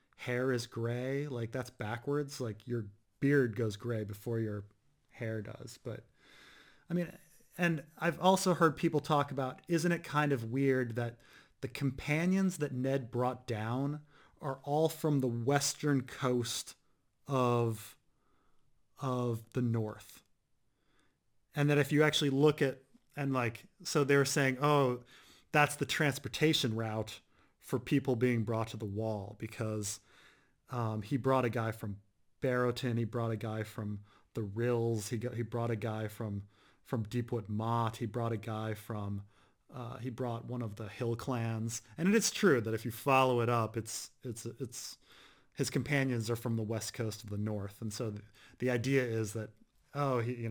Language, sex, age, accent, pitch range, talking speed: English, male, 30-49, American, 110-135 Hz, 170 wpm